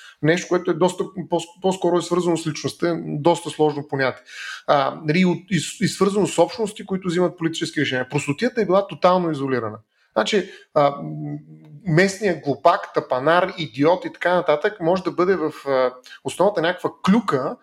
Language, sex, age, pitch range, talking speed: Bulgarian, male, 30-49, 155-195 Hz, 150 wpm